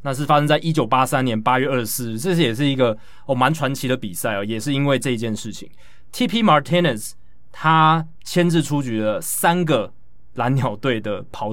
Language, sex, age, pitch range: Chinese, male, 20-39, 115-145 Hz